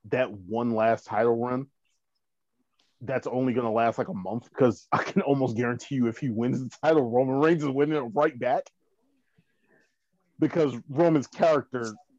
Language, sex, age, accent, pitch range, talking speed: English, male, 30-49, American, 115-145 Hz, 160 wpm